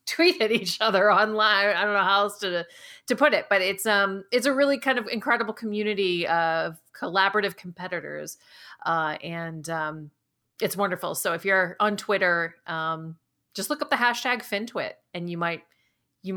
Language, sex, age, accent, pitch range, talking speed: English, female, 30-49, American, 175-240 Hz, 170 wpm